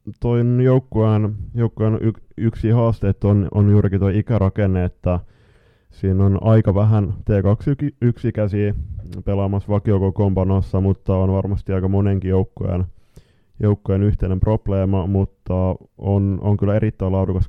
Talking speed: 125 wpm